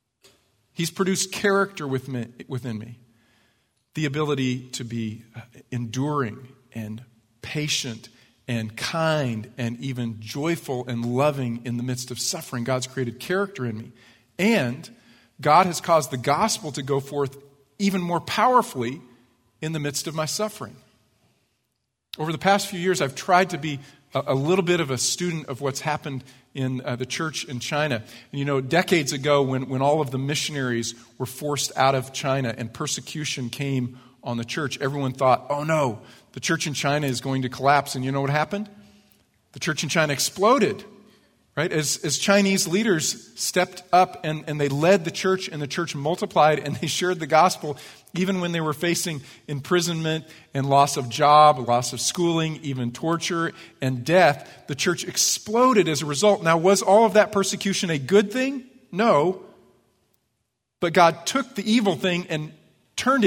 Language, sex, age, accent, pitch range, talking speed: English, male, 40-59, American, 125-170 Hz, 170 wpm